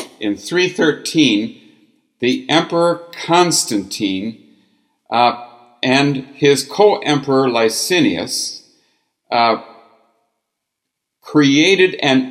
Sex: male